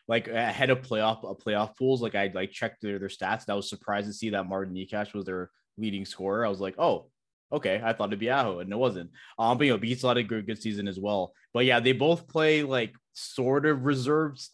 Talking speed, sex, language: 260 wpm, male, English